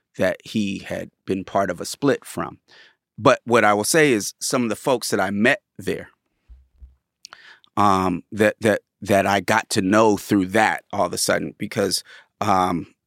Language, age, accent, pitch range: English, 30-49, American, 100-130 Hz